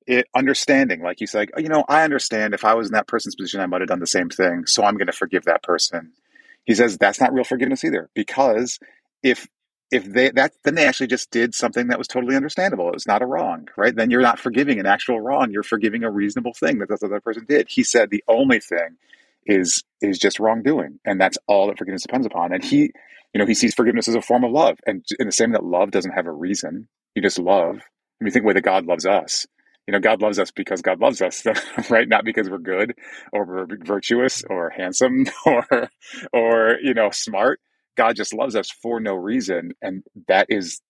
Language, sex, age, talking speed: English, male, 30-49, 240 wpm